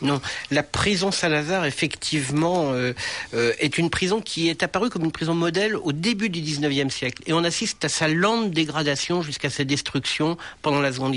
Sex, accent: male, French